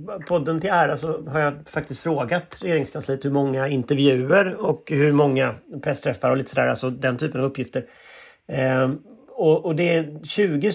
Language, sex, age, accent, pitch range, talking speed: English, male, 30-49, Swedish, 135-190 Hz, 165 wpm